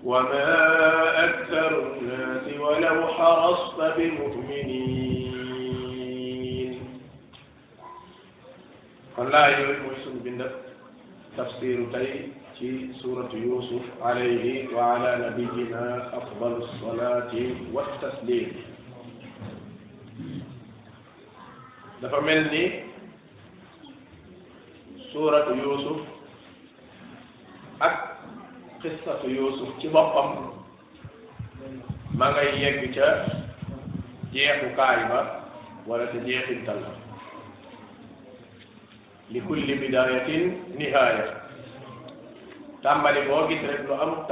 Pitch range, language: 125-150 Hz, French